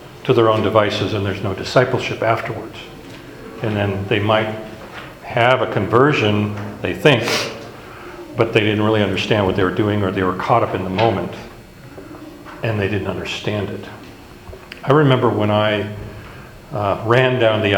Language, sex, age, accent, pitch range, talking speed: English, male, 50-69, American, 100-125 Hz, 160 wpm